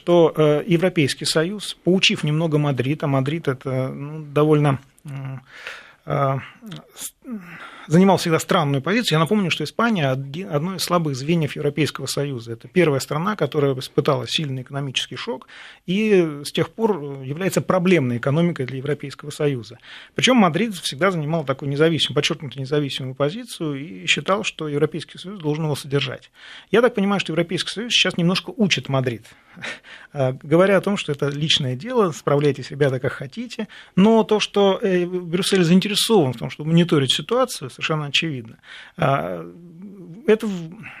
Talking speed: 140 wpm